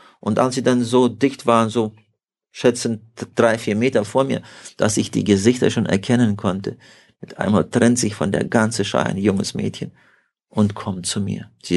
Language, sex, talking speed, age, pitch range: German, male, 190 wpm, 50-69, 105-120 Hz